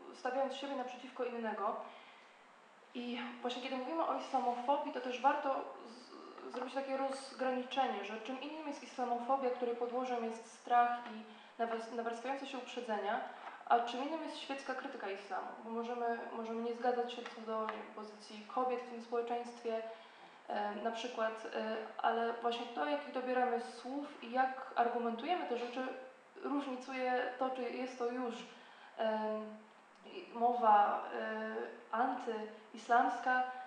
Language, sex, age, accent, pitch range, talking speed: Polish, female, 20-39, native, 230-260 Hz, 135 wpm